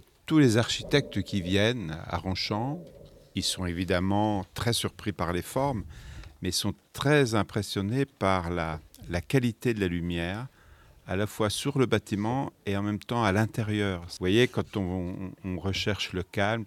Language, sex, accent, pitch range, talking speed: French, male, French, 90-125 Hz, 170 wpm